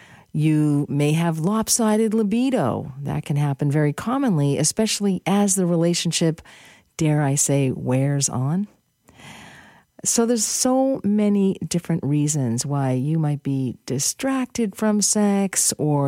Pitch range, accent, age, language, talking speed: 140-205 Hz, American, 50-69, English, 125 wpm